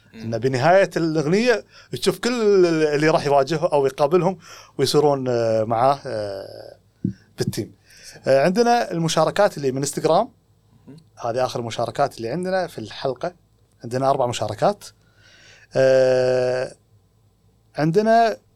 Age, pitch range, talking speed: 30-49, 120-180 Hz, 95 wpm